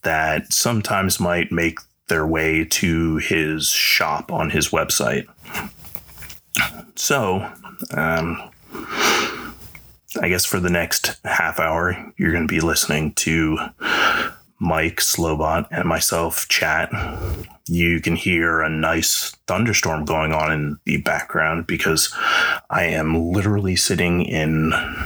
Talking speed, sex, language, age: 115 wpm, male, English, 30-49